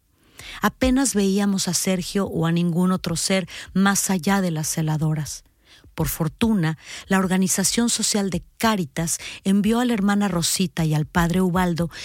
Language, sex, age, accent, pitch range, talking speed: Spanish, female, 40-59, Mexican, 170-200 Hz, 150 wpm